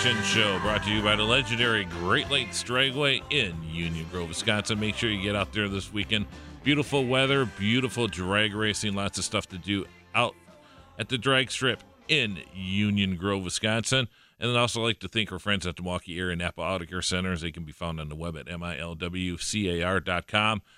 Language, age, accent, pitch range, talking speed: English, 50-69, American, 90-110 Hz, 190 wpm